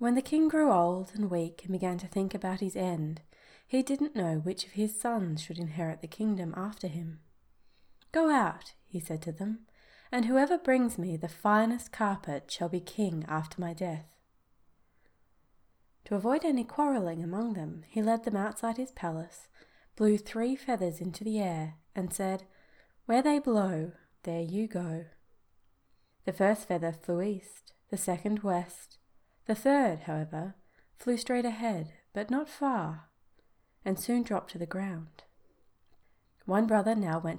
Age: 20-39